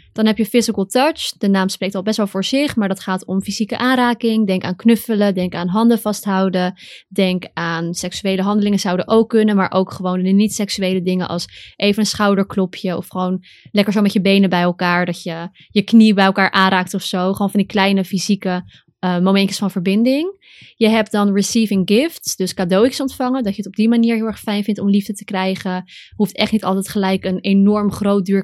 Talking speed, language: 215 wpm, Dutch